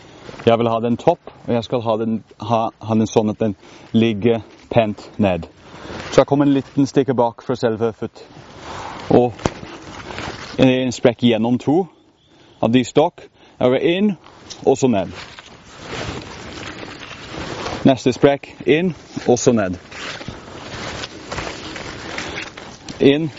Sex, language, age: male, English, 30-49